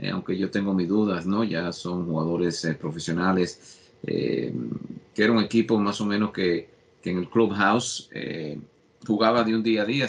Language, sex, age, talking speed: English, male, 50-69, 185 wpm